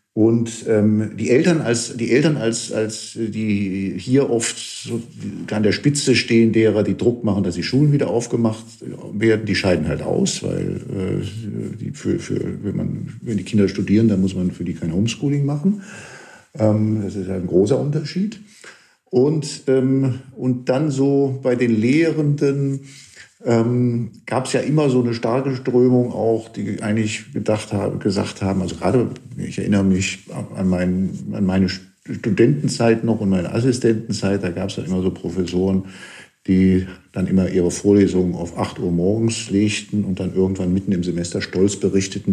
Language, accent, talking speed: German, German, 170 wpm